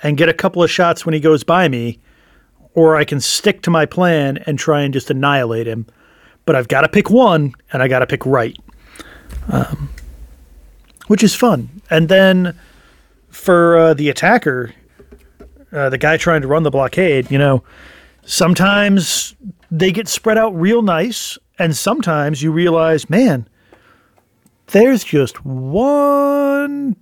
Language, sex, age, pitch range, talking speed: English, male, 40-59, 140-190 Hz, 160 wpm